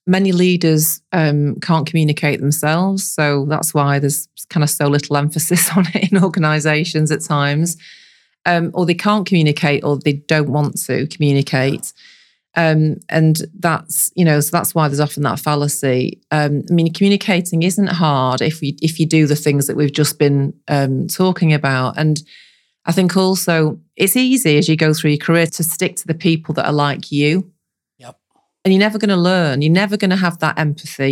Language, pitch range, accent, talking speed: English, 145-170 Hz, British, 185 wpm